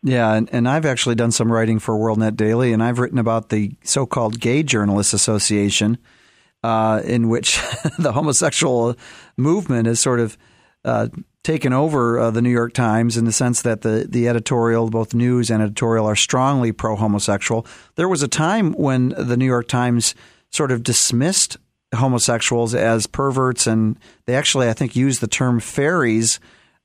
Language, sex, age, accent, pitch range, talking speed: English, male, 40-59, American, 115-135 Hz, 170 wpm